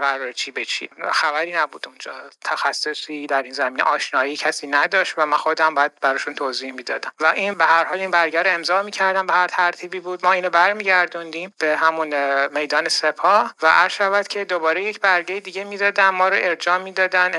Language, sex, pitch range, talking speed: Persian, male, 145-180 Hz, 185 wpm